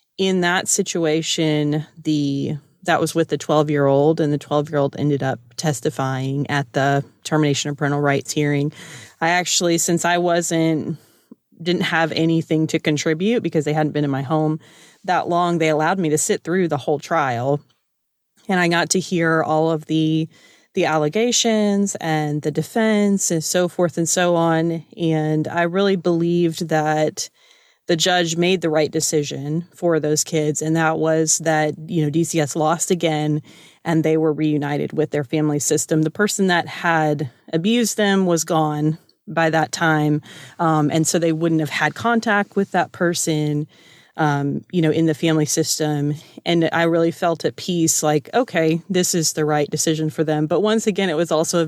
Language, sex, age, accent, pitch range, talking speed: English, female, 30-49, American, 150-175 Hz, 175 wpm